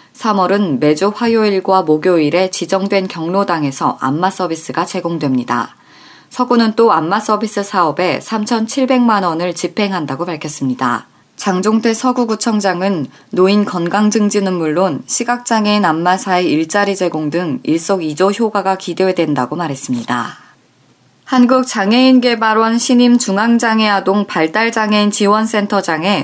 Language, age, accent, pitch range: Korean, 20-39, native, 175-220 Hz